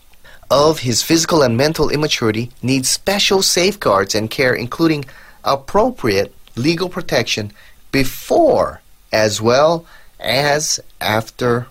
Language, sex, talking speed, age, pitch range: English, male, 100 wpm, 30-49, 105-160 Hz